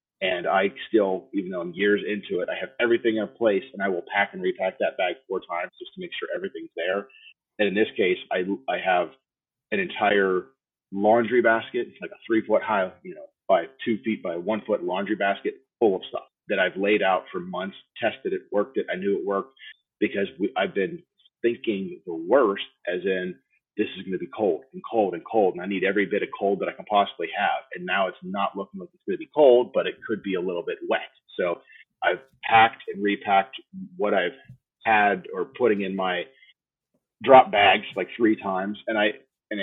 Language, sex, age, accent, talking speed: English, male, 30-49, American, 215 wpm